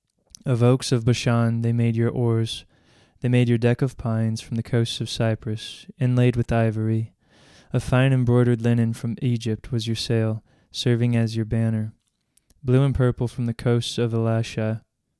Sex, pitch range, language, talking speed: male, 115-125 Hz, English, 170 wpm